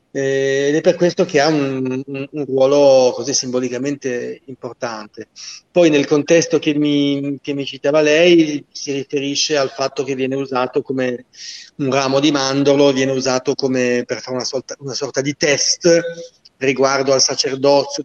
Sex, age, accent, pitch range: male, 30-49, native, 130-155 Hz